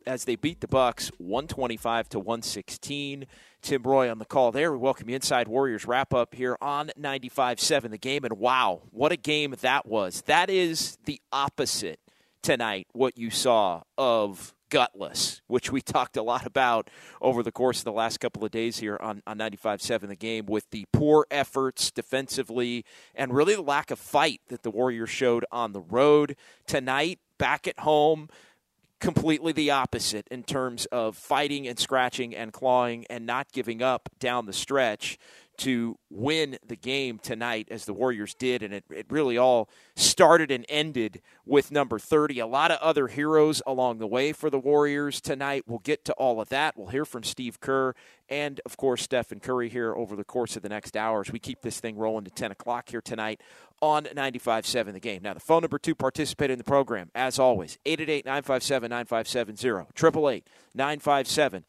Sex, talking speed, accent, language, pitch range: male, 180 wpm, American, English, 115-140 Hz